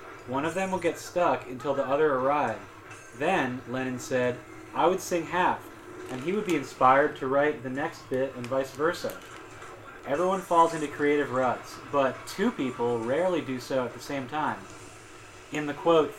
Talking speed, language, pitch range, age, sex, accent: 180 wpm, English, 125-145 Hz, 30-49, male, American